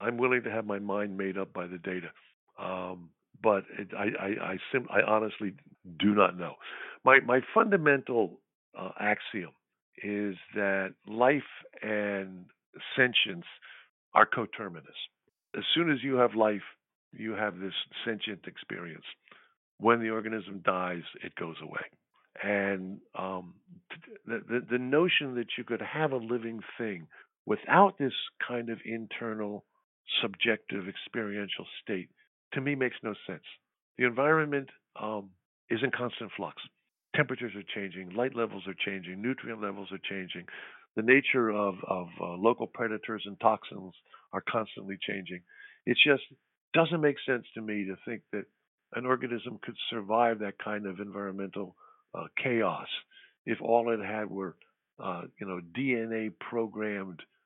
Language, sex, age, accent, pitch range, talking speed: English, male, 50-69, American, 100-125 Hz, 145 wpm